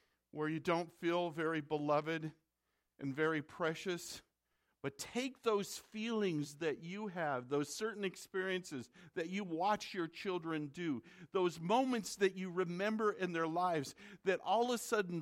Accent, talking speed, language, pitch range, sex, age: American, 150 wpm, English, 120-185 Hz, male, 50-69